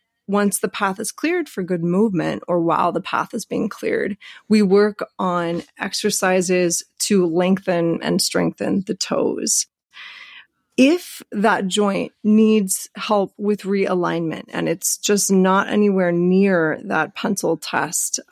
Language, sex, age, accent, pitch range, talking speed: English, female, 30-49, American, 180-210 Hz, 135 wpm